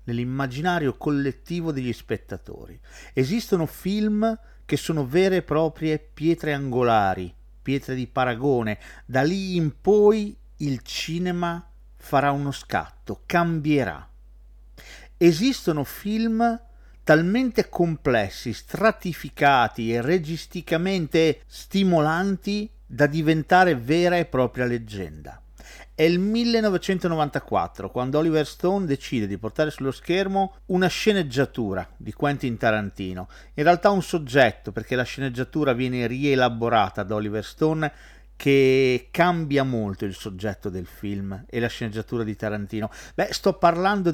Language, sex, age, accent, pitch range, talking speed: Italian, male, 40-59, native, 120-175 Hz, 115 wpm